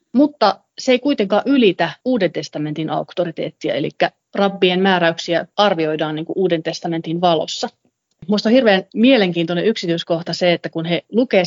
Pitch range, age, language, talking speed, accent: 170-215 Hz, 30-49, Finnish, 130 wpm, native